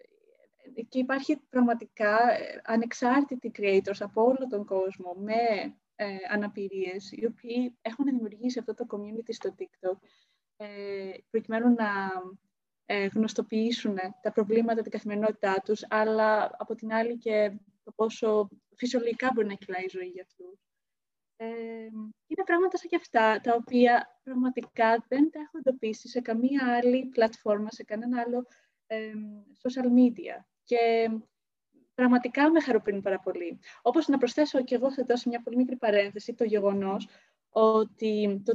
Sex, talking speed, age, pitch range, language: female, 140 wpm, 20-39, 210-255 Hz, Greek